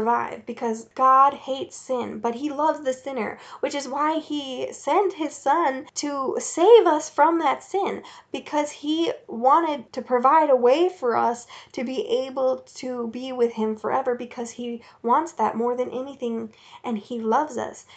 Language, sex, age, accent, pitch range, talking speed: English, female, 10-29, American, 235-285 Hz, 165 wpm